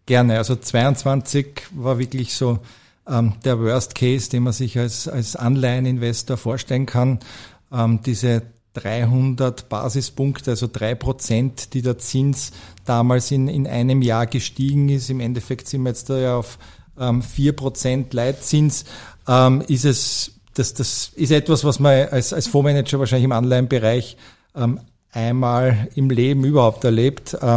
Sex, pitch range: male, 120-135 Hz